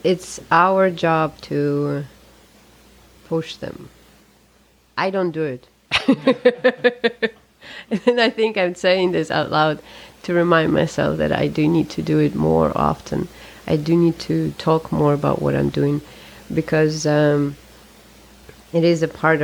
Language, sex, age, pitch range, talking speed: English, female, 30-49, 145-170 Hz, 140 wpm